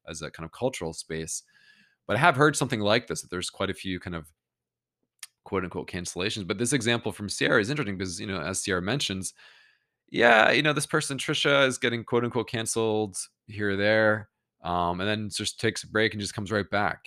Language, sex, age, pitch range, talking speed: English, male, 20-39, 90-120 Hz, 220 wpm